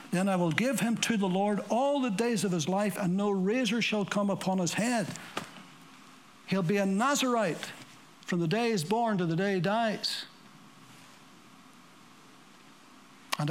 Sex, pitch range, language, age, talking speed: male, 160-205 Hz, English, 60-79, 165 wpm